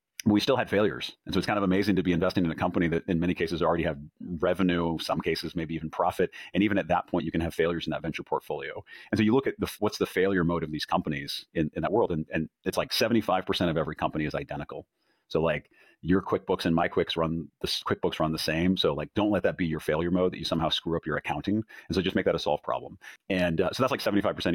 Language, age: English, 40-59